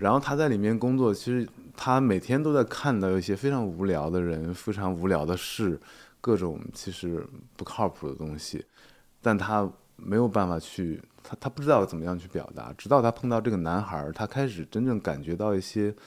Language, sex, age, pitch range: Chinese, male, 20-39, 90-120 Hz